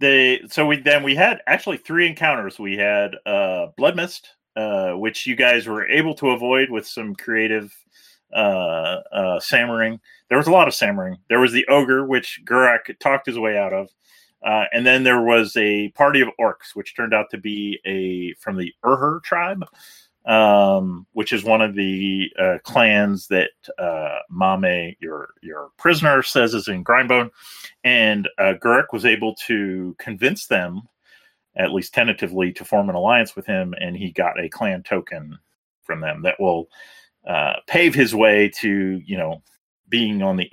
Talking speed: 175 wpm